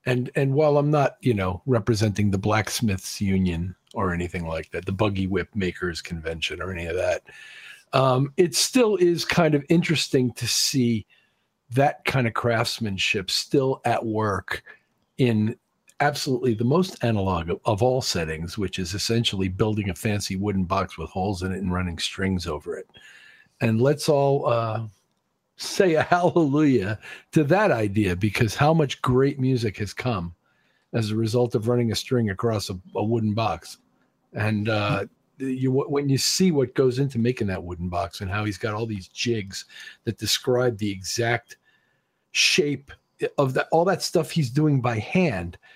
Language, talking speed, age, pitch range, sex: English, 170 wpm, 50-69, 105-135 Hz, male